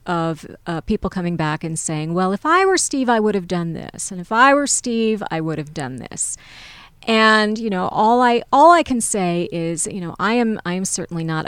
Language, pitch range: English, 160-205 Hz